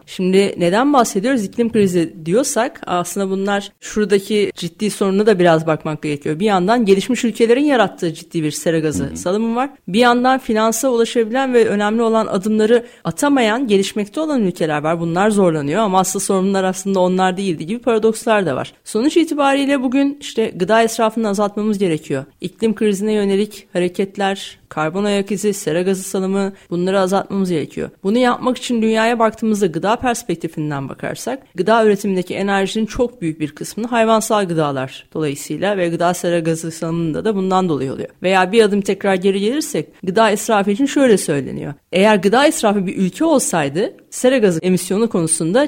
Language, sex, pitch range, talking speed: Turkish, female, 180-240 Hz, 160 wpm